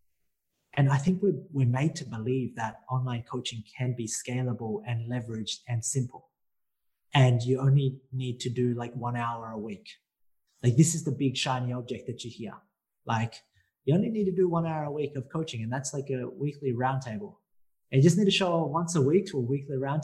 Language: English